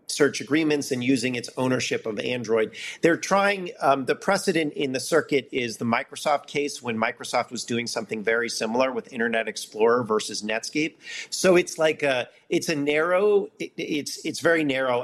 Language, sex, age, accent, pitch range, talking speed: English, male, 40-59, American, 120-155 Hz, 175 wpm